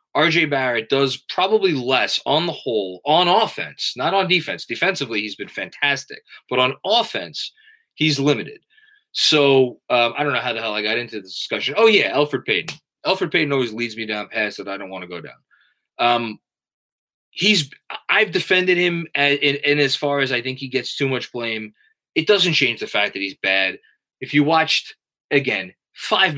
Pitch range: 110-155 Hz